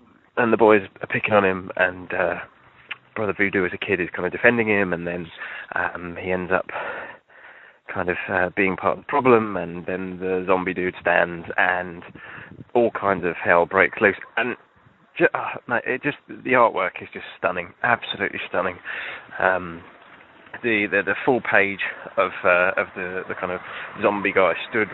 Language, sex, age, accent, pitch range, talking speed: English, male, 20-39, British, 95-130 Hz, 180 wpm